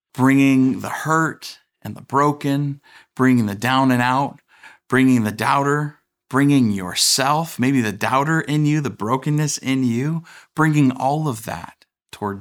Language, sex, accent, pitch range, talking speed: English, male, American, 105-130 Hz, 145 wpm